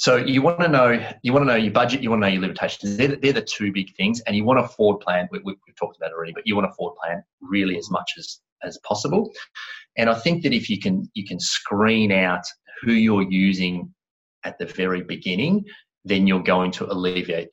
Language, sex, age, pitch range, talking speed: English, male, 30-49, 95-110 Hz, 240 wpm